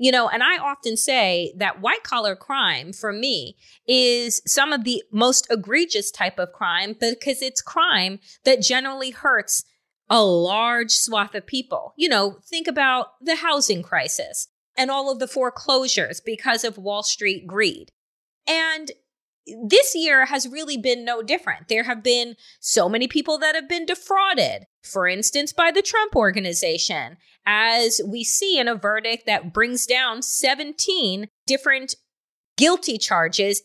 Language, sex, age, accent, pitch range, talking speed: English, female, 30-49, American, 225-295 Hz, 155 wpm